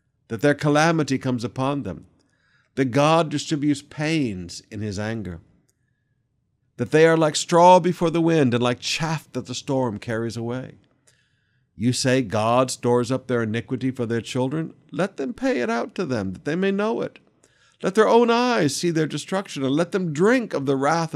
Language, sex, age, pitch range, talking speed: English, male, 60-79, 115-150 Hz, 185 wpm